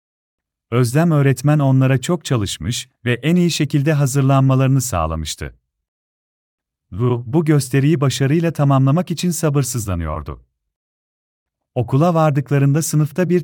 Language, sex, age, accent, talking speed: Turkish, male, 40-59, native, 100 wpm